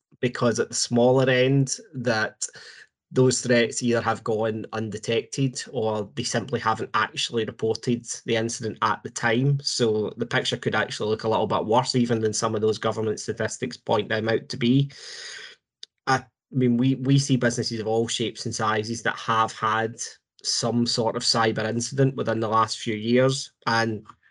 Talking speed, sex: 175 wpm, male